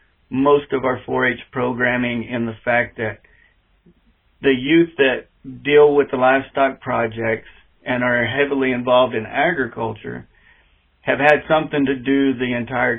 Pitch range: 115-135 Hz